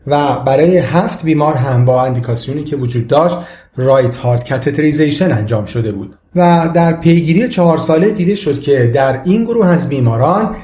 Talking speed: 165 wpm